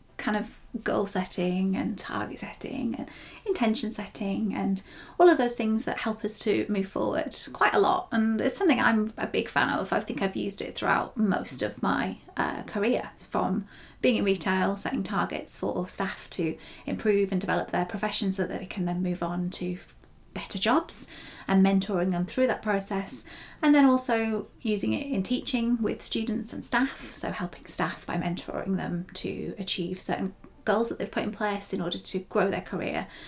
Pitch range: 190-230 Hz